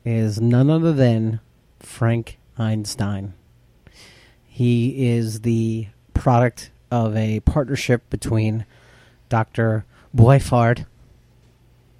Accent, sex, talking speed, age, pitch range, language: American, male, 80 wpm, 40-59, 110-125 Hz, English